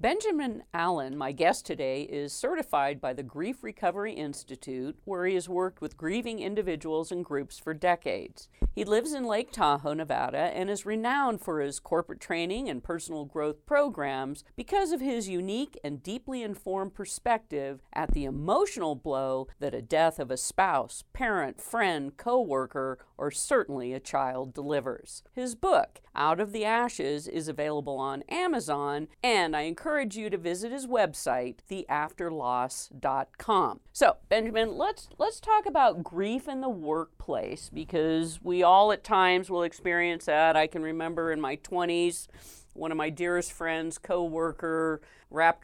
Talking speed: 155 wpm